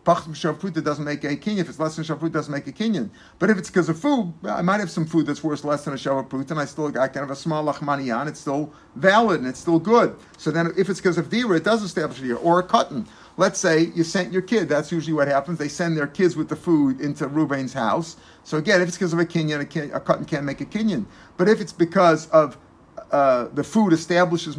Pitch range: 150-185 Hz